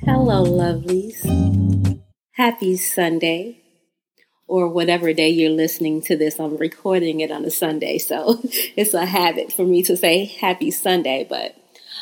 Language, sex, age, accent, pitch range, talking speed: English, female, 30-49, American, 170-210 Hz, 140 wpm